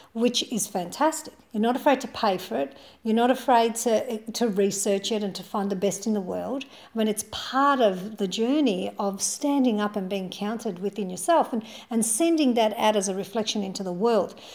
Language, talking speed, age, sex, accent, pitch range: English, 210 wpm, 50-69, female, Australian, 200-245 Hz